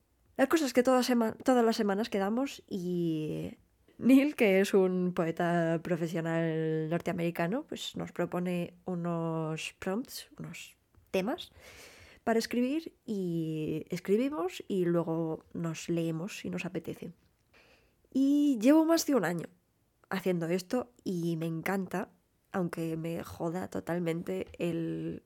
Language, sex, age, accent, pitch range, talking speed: English, female, 20-39, Spanish, 170-230 Hz, 115 wpm